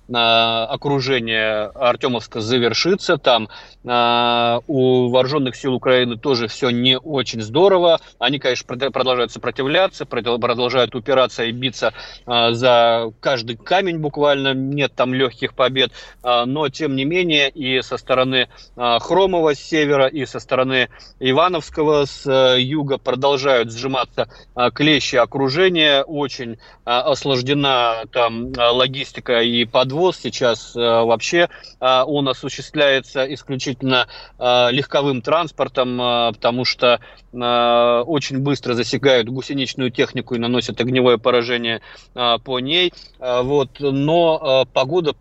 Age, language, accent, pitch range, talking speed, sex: 30-49, Russian, native, 120-140 Hz, 100 wpm, male